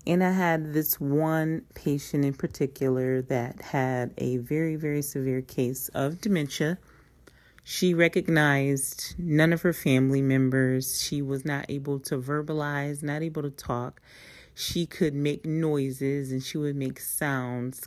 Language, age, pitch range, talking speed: English, 40-59, 130-160 Hz, 145 wpm